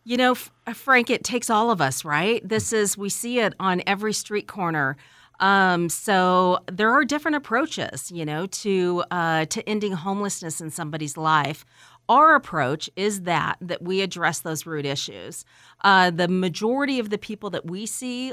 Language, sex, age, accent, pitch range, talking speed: English, female, 40-59, American, 170-215 Hz, 175 wpm